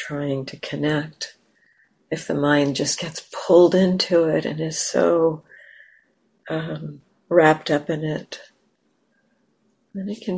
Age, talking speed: 60-79, 125 wpm